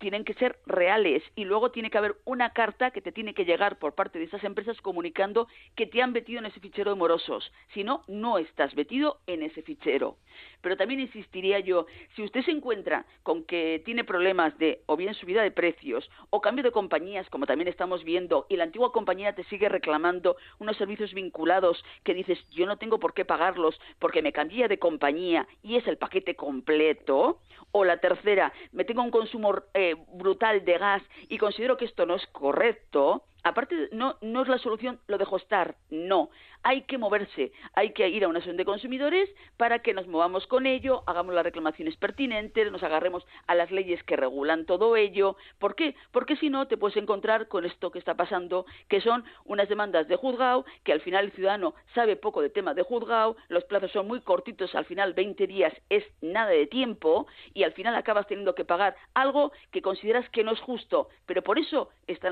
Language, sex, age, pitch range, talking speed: Spanish, female, 40-59, 180-245 Hz, 205 wpm